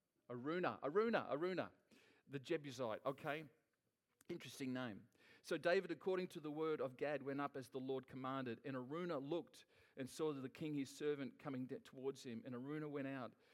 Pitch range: 125-150 Hz